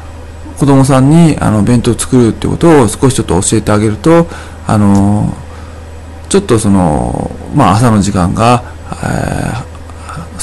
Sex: male